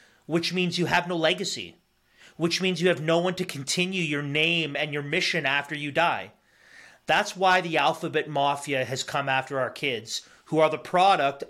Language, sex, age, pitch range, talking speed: English, male, 30-49, 145-180 Hz, 190 wpm